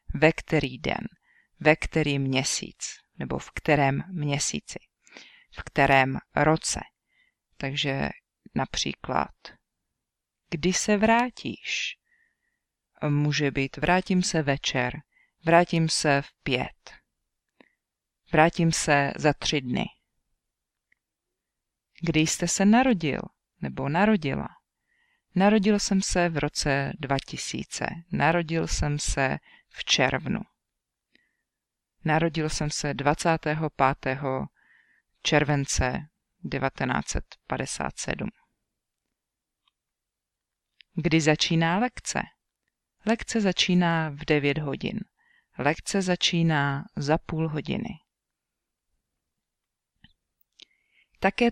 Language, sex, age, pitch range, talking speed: English, female, 40-59, 145-200 Hz, 80 wpm